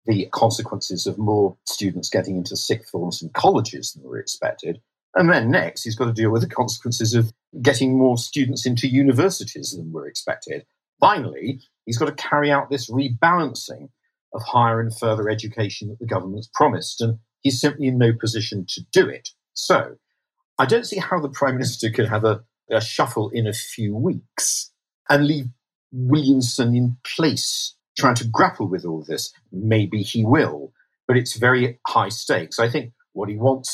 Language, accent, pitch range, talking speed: English, British, 105-130 Hz, 180 wpm